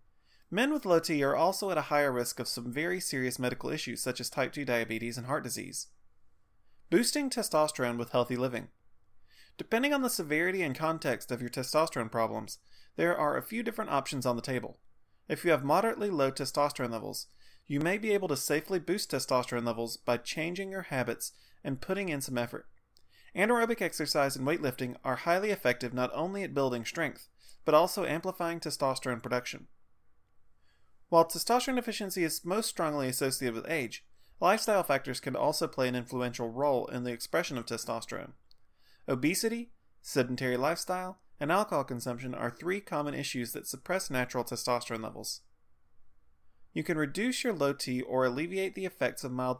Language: English